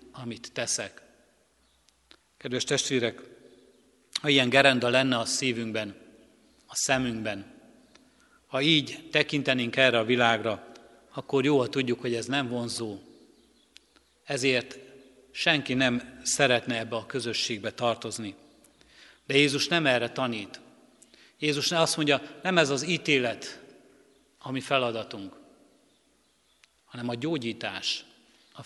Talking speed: 105 wpm